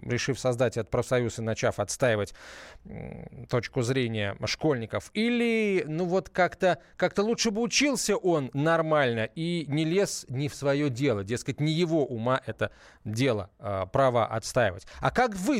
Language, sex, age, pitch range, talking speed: Russian, male, 20-39, 130-185 Hz, 145 wpm